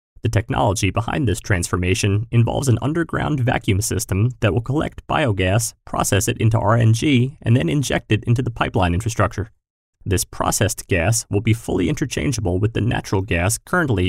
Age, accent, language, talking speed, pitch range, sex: 30-49, American, English, 160 wpm, 95-125 Hz, male